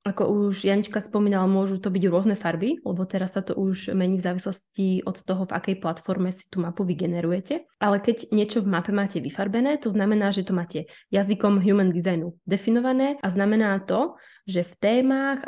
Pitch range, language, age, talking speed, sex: 180-220 Hz, Czech, 20-39, 185 wpm, female